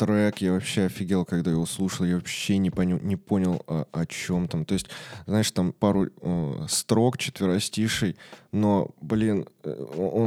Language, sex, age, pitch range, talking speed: Russian, male, 20-39, 95-115 Hz, 145 wpm